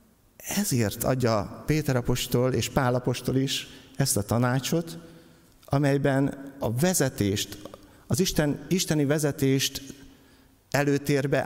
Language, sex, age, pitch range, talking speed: Hungarian, male, 50-69, 120-150 Hz, 100 wpm